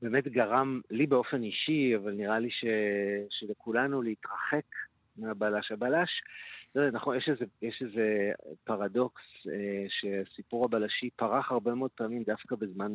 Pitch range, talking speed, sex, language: 105-130 Hz, 130 wpm, male, Hebrew